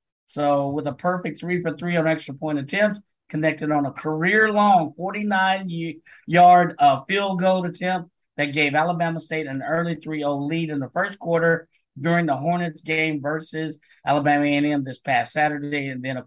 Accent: American